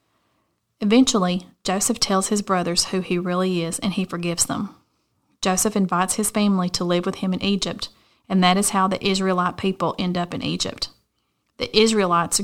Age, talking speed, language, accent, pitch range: 30-49, 175 wpm, English, American, 180-205 Hz